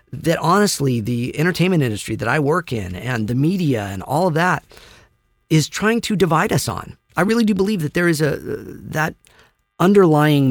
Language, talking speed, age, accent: English, 185 wpm, 40-59, American